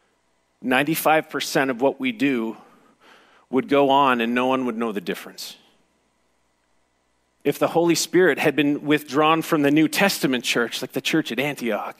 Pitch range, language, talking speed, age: 105-140 Hz, English, 155 wpm, 40-59